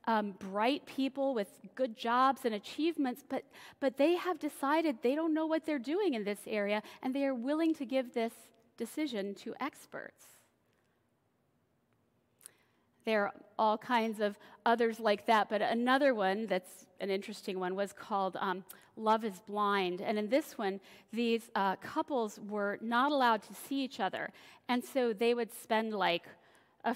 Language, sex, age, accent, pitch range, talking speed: English, female, 40-59, American, 210-265 Hz, 165 wpm